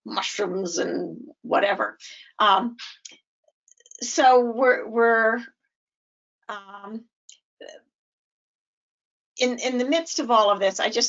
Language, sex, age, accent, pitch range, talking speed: English, female, 50-69, American, 215-265 Hz, 95 wpm